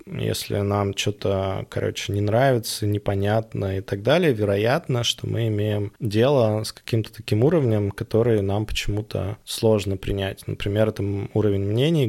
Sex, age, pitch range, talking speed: male, 20-39, 100-115 Hz, 140 wpm